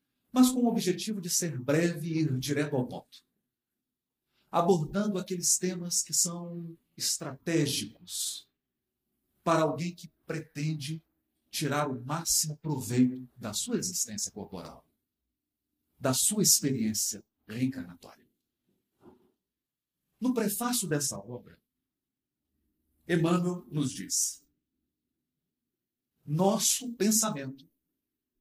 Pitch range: 135-190 Hz